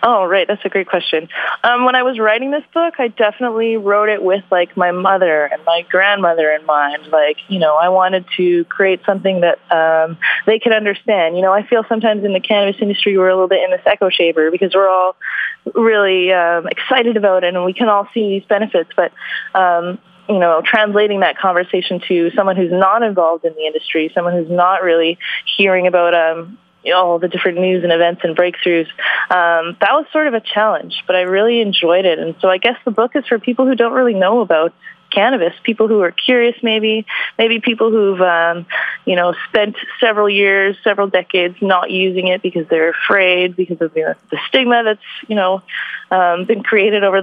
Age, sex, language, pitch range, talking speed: 20-39, female, English, 175-220 Hz, 205 wpm